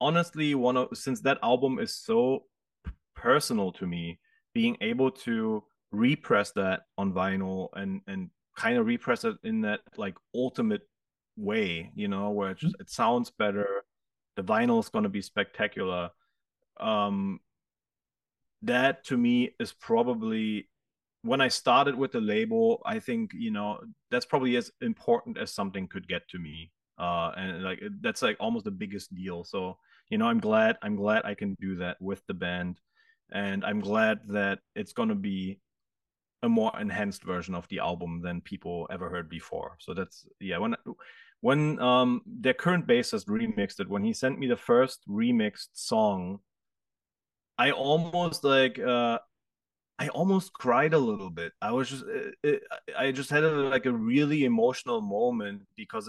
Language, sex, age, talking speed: English, male, 30-49, 165 wpm